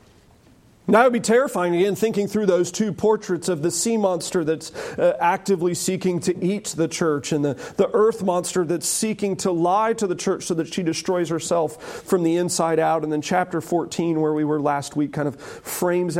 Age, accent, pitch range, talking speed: 40-59, American, 150-200 Hz, 210 wpm